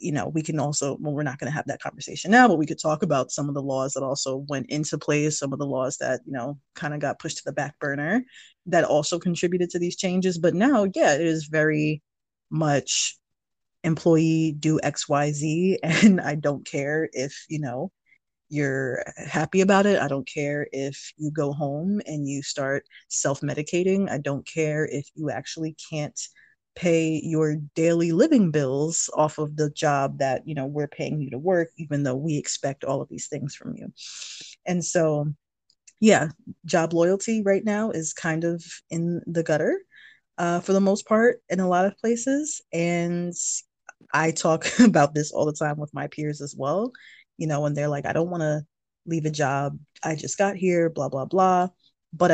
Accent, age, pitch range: American, 20-39, 145-175 Hz